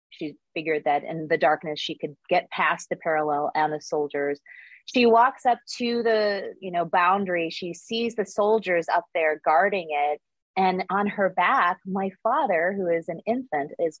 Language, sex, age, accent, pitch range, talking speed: English, female, 30-49, American, 155-205 Hz, 180 wpm